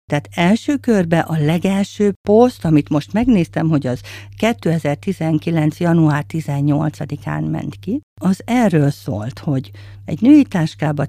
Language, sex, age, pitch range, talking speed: Hungarian, female, 50-69, 140-165 Hz, 125 wpm